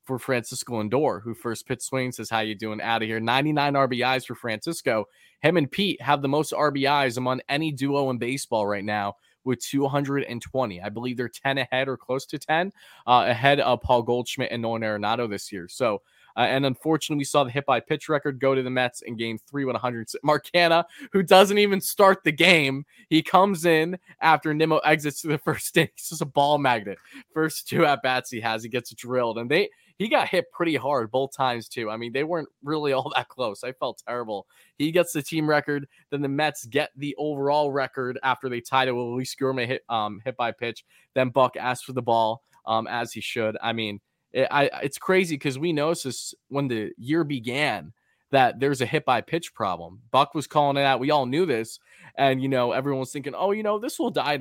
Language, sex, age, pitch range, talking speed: English, male, 20-39, 120-150 Hz, 215 wpm